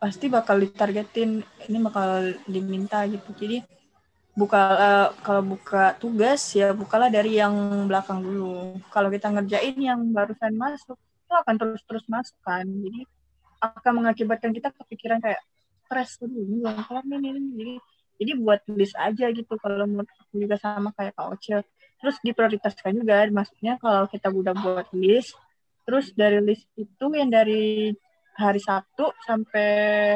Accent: native